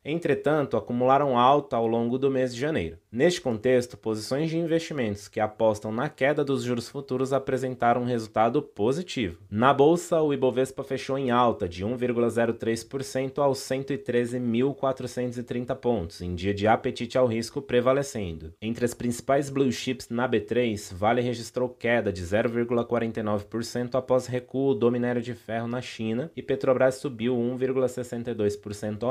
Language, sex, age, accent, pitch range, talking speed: Portuguese, male, 20-39, Brazilian, 115-135 Hz, 140 wpm